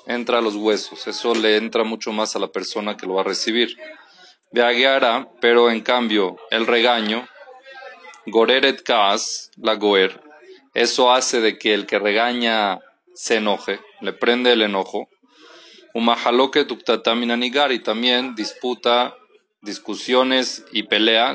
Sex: male